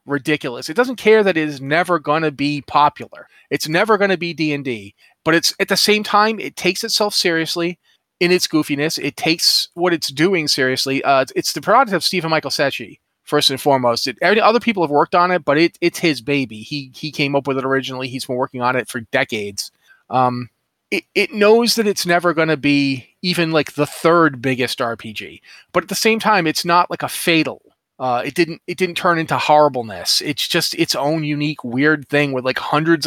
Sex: male